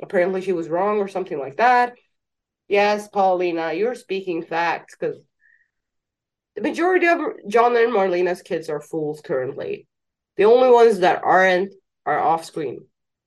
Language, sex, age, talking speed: English, female, 30-49, 140 wpm